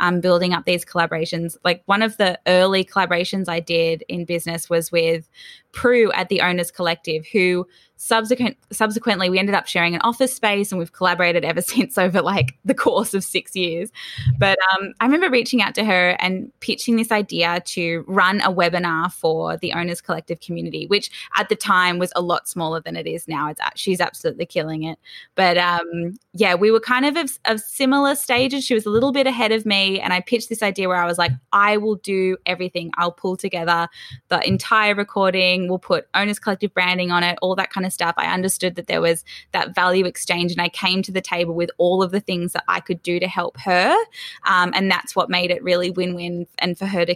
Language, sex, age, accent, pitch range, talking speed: English, female, 10-29, Australian, 175-205 Hz, 215 wpm